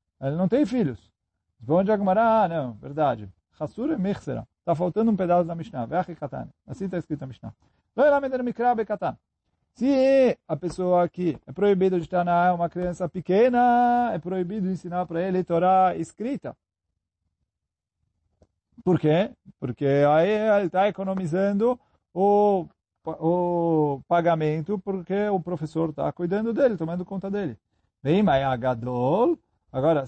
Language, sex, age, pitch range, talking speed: Portuguese, male, 40-59, 140-205 Hz, 145 wpm